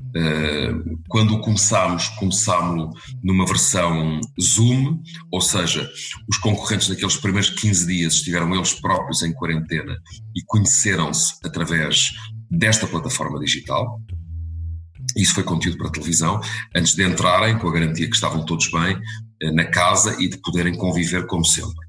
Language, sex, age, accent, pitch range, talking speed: English, male, 40-59, Portuguese, 85-110 Hz, 135 wpm